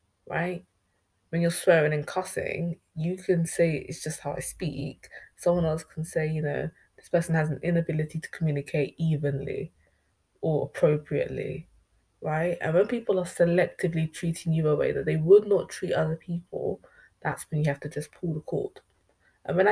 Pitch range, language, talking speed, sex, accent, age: 145-175 Hz, English, 175 wpm, female, British, 20-39